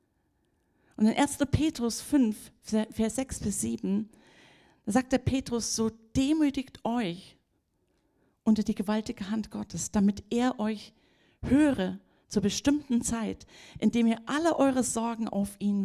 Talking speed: 125 wpm